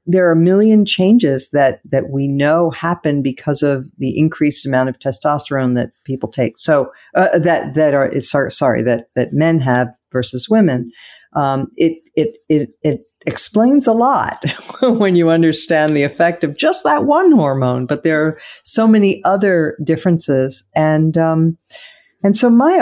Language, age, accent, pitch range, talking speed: English, 50-69, American, 135-175 Hz, 165 wpm